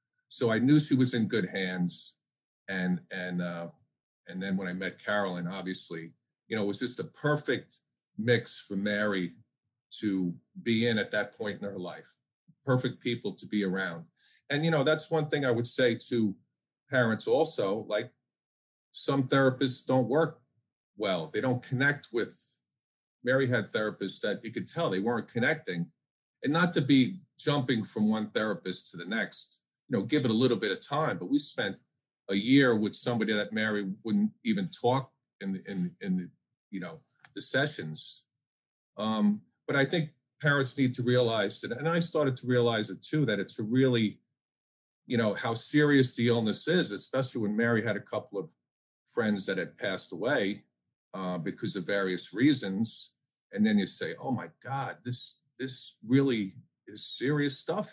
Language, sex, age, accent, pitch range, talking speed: English, male, 40-59, American, 105-145 Hz, 170 wpm